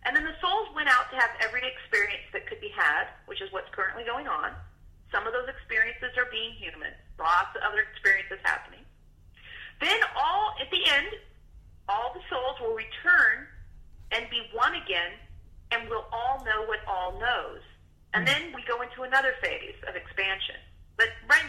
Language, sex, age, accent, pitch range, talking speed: English, female, 40-59, American, 195-325 Hz, 180 wpm